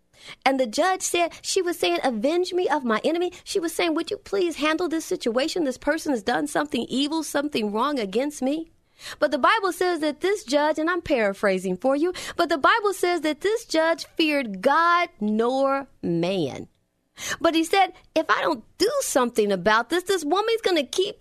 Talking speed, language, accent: 195 wpm, English, American